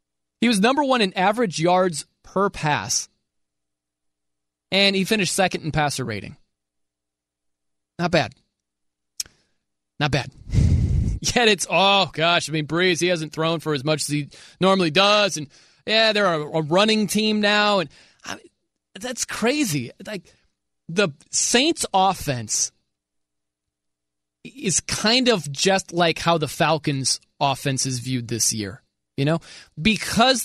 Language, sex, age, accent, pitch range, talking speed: English, male, 20-39, American, 120-185 Hz, 135 wpm